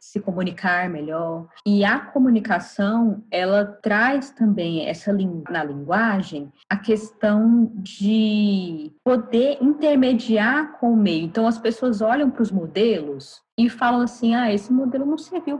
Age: 20-39